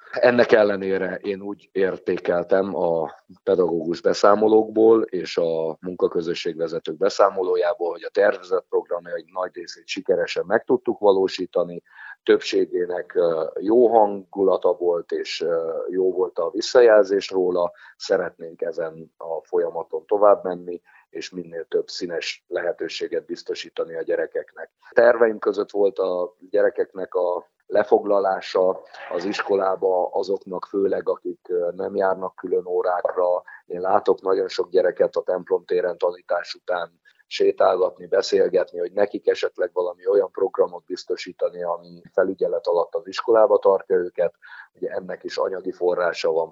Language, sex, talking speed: Hungarian, male, 125 wpm